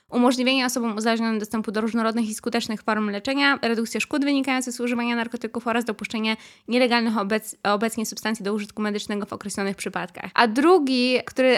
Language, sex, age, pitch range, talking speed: Polish, female, 20-39, 210-245 Hz, 160 wpm